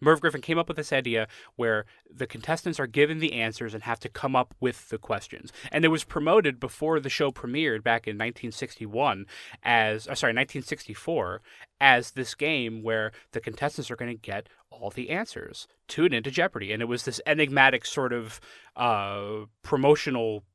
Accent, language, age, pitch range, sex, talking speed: American, English, 30-49, 115-145 Hz, male, 180 wpm